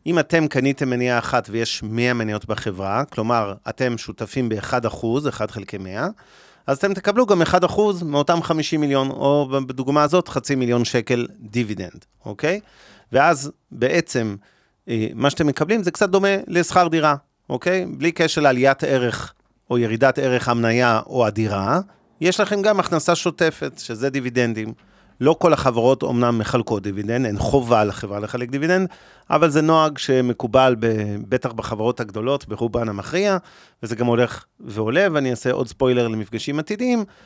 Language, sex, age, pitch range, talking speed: Hebrew, male, 30-49, 115-160 Hz, 150 wpm